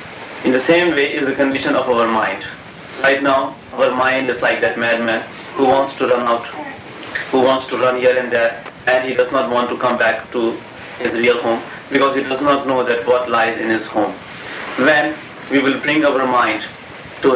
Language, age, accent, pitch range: English, 30-49, Indian, 120-140 Hz